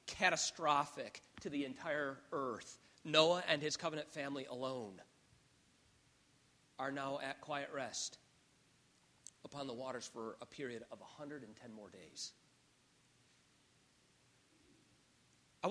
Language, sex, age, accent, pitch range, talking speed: English, male, 40-59, American, 135-185 Hz, 105 wpm